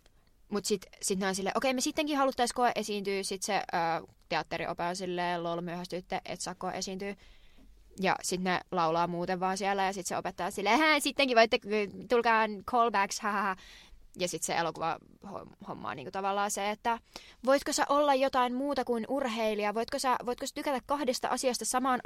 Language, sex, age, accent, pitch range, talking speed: Finnish, female, 20-39, native, 175-225 Hz, 175 wpm